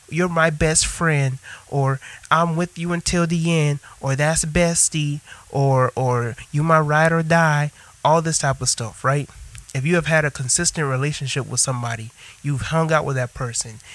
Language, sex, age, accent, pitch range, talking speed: English, male, 30-49, American, 125-160 Hz, 180 wpm